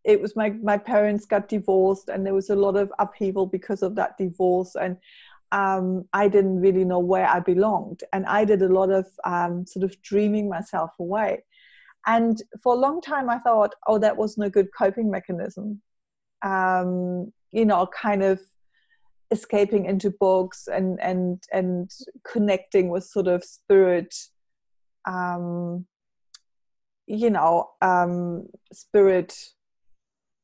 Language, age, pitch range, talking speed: English, 30-49, 185-220 Hz, 145 wpm